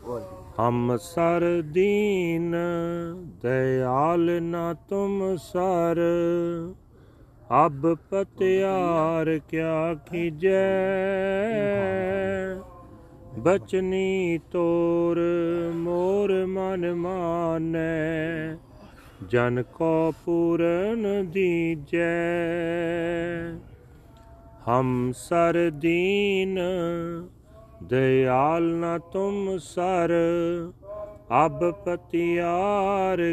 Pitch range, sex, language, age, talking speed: 160-190 Hz, male, English, 40-59, 45 wpm